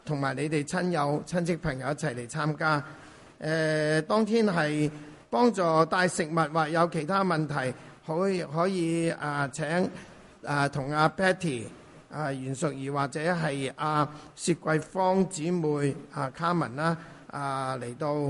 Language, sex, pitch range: English, male, 140-170 Hz